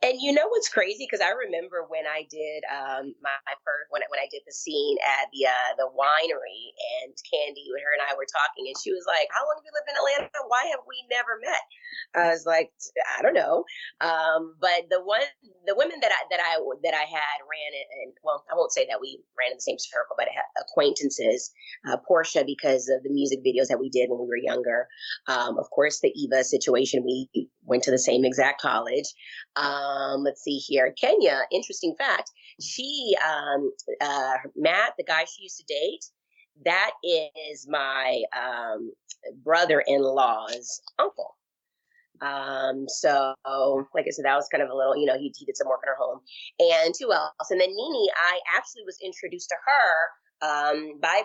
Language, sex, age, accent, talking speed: English, female, 20-39, American, 200 wpm